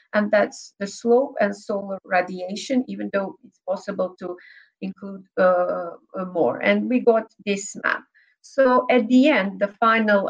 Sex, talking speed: female, 150 wpm